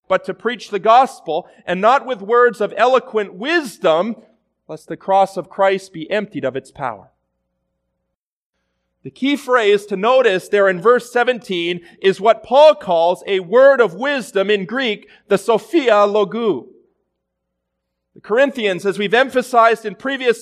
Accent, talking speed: American, 150 wpm